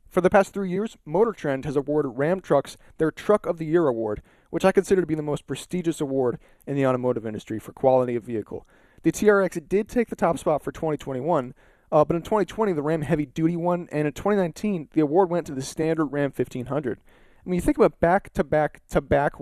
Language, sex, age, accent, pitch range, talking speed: English, male, 30-49, American, 135-180 Hz, 215 wpm